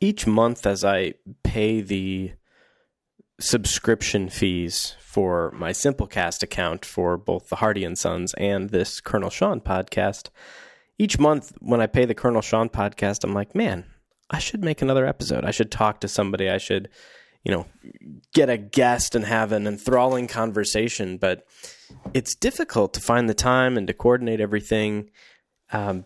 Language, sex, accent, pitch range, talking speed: English, male, American, 100-120 Hz, 160 wpm